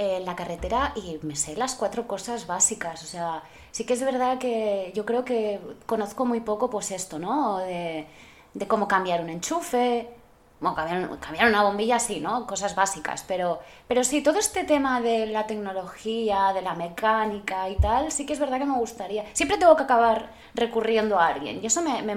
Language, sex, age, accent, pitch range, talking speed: Spanish, female, 20-39, Spanish, 185-235 Hz, 190 wpm